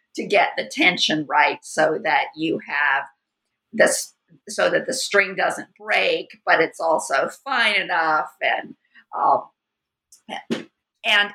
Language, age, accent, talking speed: English, 50-69, American, 125 wpm